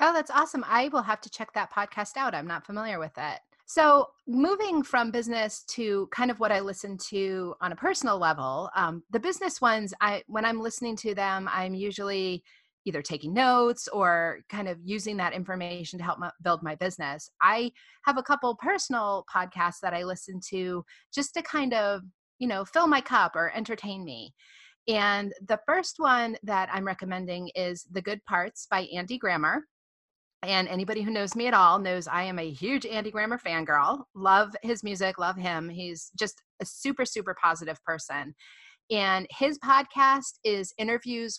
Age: 30-49